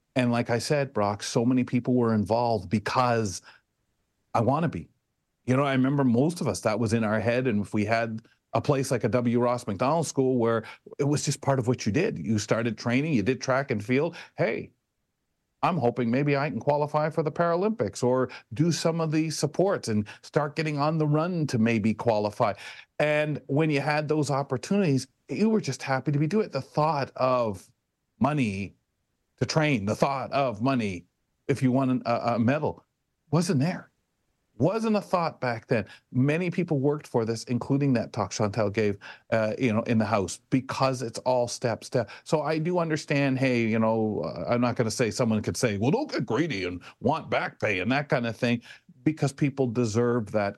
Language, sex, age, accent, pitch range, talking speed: English, male, 40-59, American, 115-145 Hz, 200 wpm